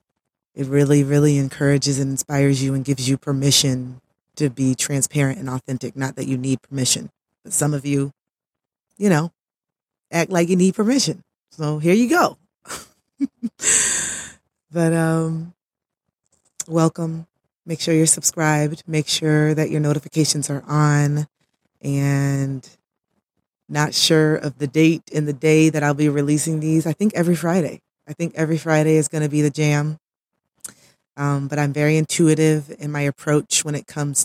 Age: 20-39